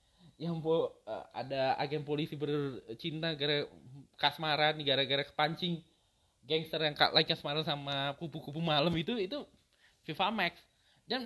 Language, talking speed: Indonesian, 125 wpm